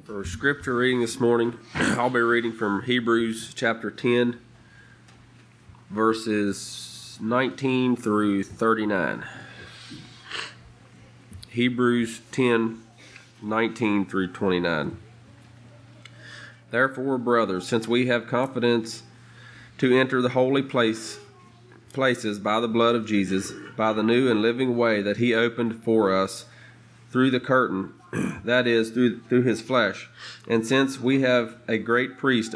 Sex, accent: male, American